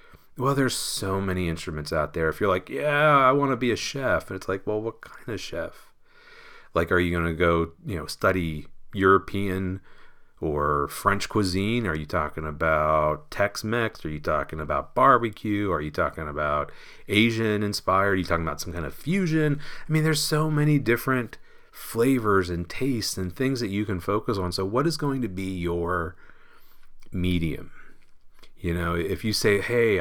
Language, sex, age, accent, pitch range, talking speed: English, male, 40-59, American, 85-125 Hz, 185 wpm